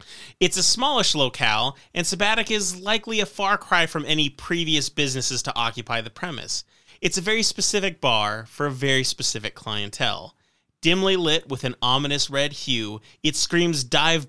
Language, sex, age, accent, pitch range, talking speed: English, male, 30-49, American, 115-170 Hz, 165 wpm